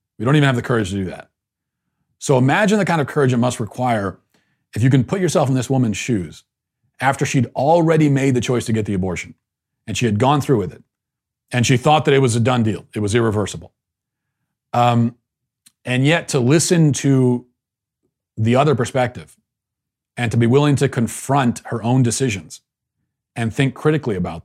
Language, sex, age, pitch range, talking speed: English, male, 40-59, 105-135 Hz, 190 wpm